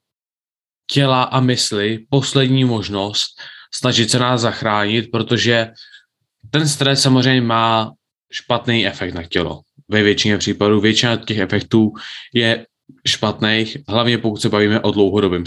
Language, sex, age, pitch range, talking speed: Czech, male, 20-39, 105-125 Hz, 125 wpm